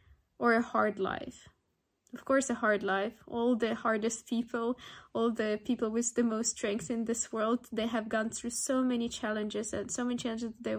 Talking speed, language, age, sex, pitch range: 195 wpm, English, 10-29, female, 210-235 Hz